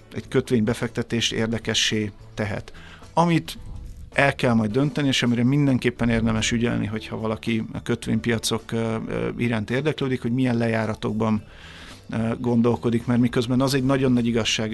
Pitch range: 110-130 Hz